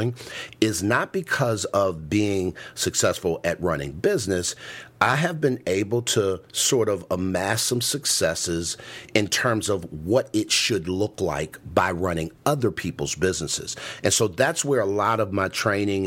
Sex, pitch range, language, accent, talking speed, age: male, 95-120 Hz, English, American, 155 wpm, 50-69